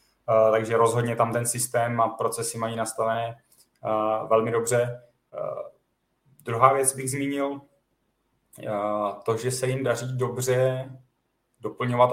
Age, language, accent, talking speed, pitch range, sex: 30-49, Czech, native, 130 wpm, 110-125 Hz, male